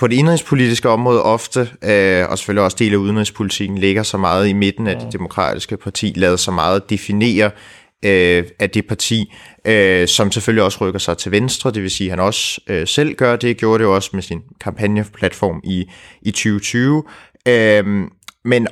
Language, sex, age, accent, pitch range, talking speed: English, male, 30-49, Danish, 95-115 Hz, 175 wpm